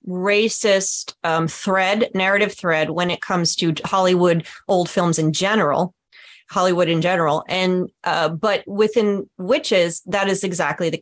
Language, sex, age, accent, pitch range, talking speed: English, female, 30-49, American, 180-215 Hz, 140 wpm